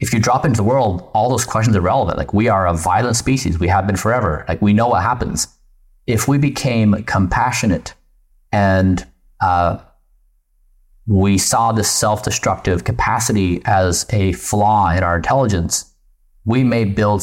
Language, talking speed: English, 160 wpm